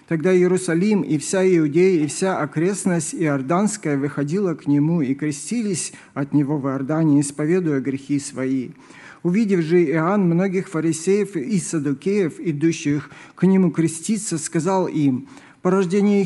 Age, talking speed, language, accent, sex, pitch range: 50-69, 135 wpm, Russian, native, male, 160-195 Hz